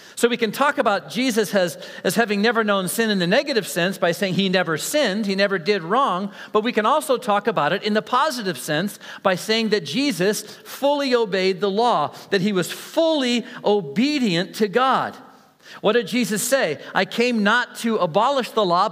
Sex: male